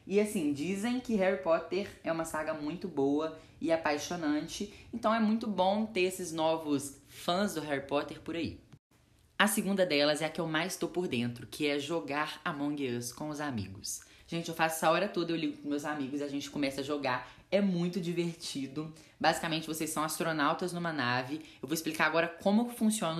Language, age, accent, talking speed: Portuguese, 10-29, Brazilian, 200 wpm